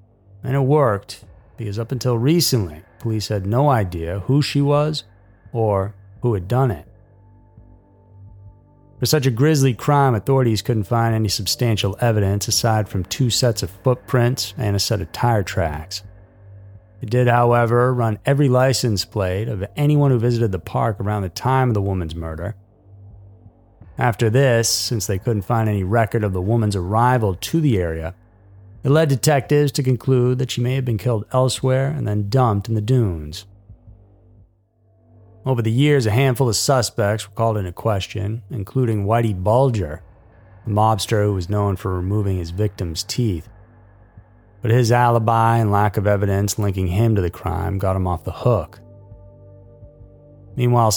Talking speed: 160 wpm